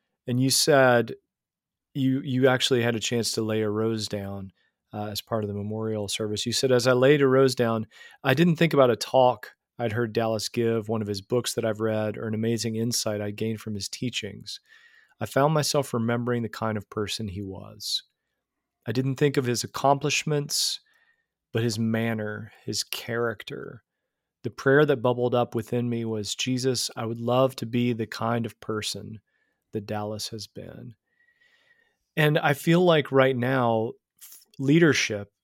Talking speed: 175 wpm